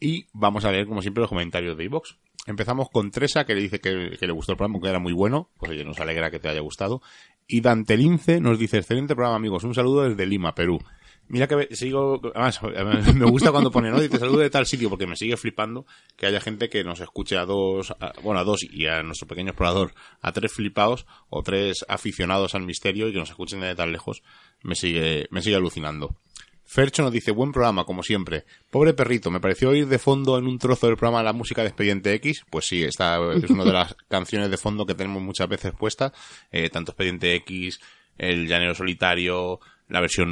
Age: 30-49